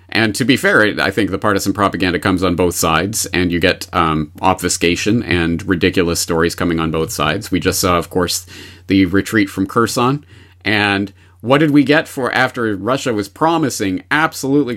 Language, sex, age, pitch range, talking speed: English, male, 30-49, 90-130 Hz, 185 wpm